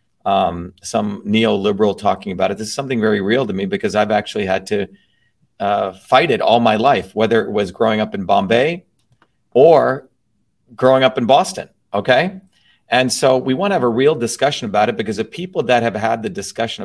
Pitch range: 110-130 Hz